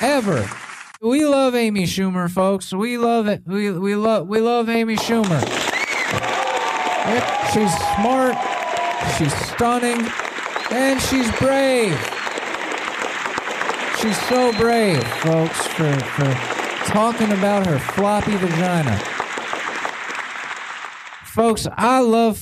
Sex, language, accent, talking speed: male, English, American, 95 wpm